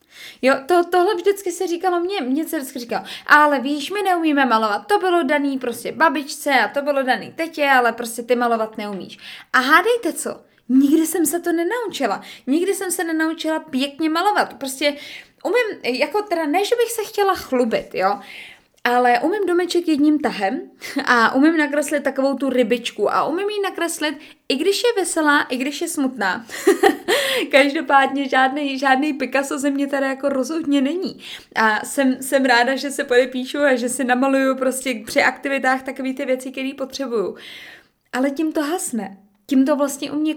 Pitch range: 260-330 Hz